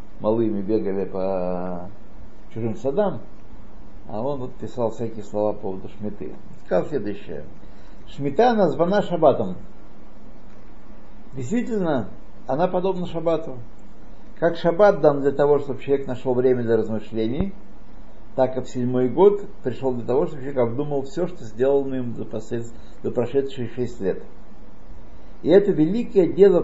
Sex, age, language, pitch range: male, 60-79, Russian, 110-165 Hz